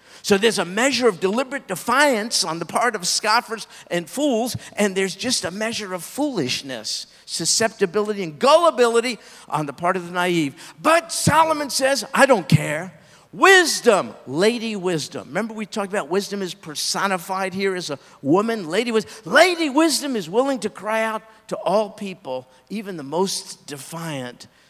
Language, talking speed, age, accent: English, 160 wpm, 50-69, American